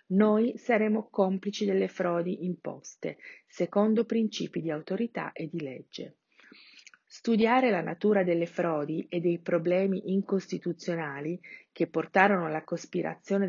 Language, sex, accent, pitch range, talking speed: Italian, female, native, 165-205 Hz, 115 wpm